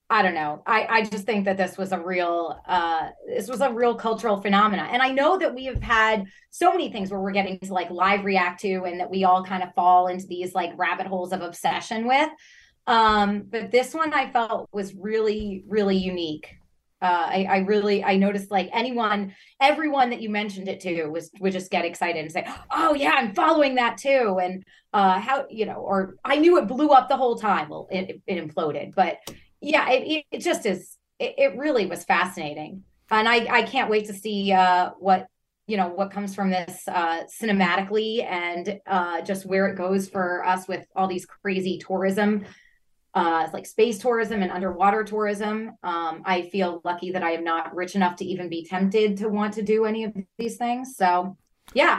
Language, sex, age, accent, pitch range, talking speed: English, female, 30-49, American, 180-225 Hz, 205 wpm